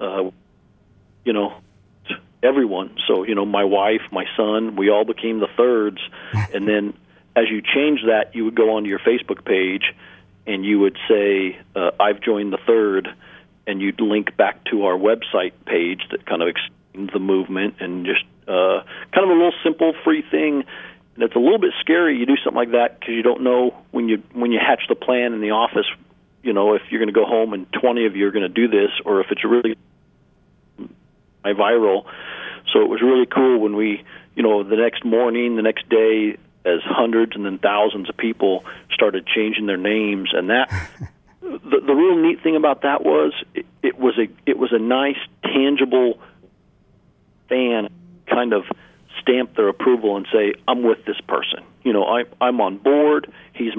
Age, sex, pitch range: 40-59, male, 105-130 Hz